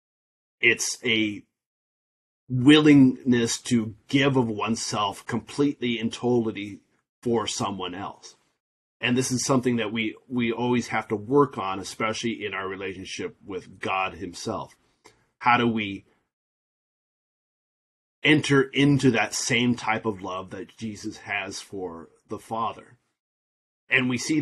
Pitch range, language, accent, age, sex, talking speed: 110-130 Hz, English, American, 30-49, male, 125 wpm